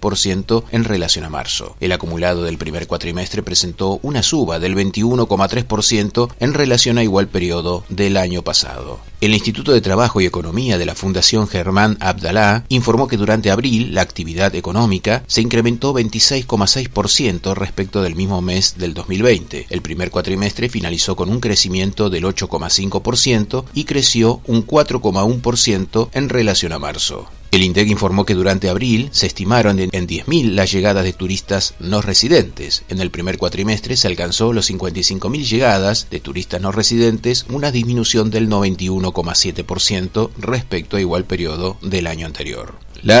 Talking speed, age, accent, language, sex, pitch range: 150 wpm, 30-49, Argentinian, Spanish, male, 95-115 Hz